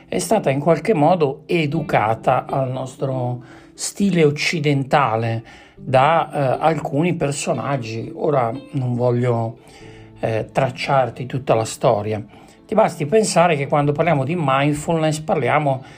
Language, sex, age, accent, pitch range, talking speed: Italian, male, 60-79, native, 130-160 Hz, 115 wpm